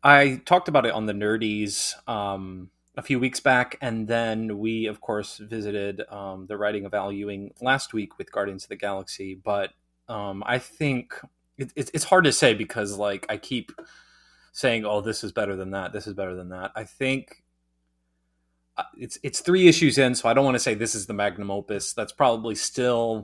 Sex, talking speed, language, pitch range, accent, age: male, 195 wpm, English, 95-120 Hz, American, 20-39